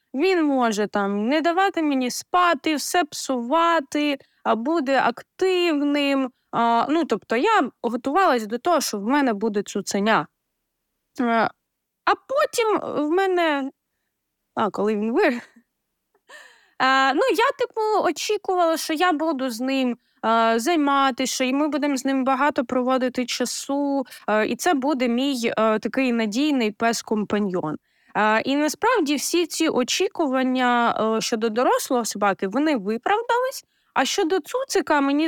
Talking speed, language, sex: 130 wpm, Ukrainian, female